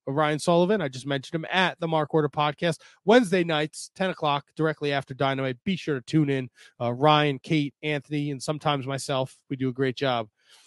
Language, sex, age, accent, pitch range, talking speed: English, male, 30-49, American, 140-175 Hz, 195 wpm